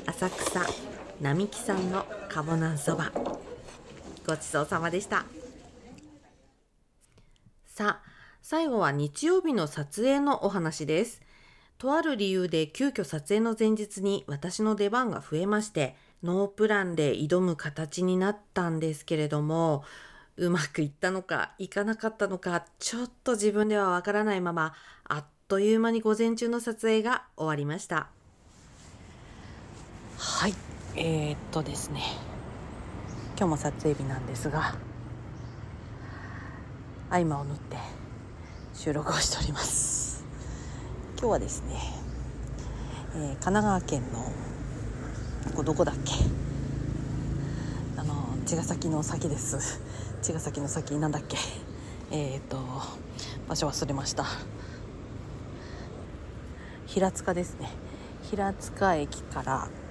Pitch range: 130-195 Hz